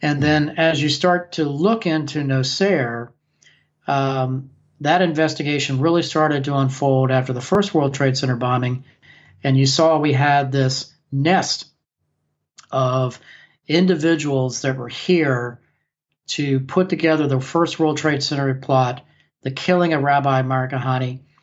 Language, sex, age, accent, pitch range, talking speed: English, male, 40-59, American, 135-160 Hz, 135 wpm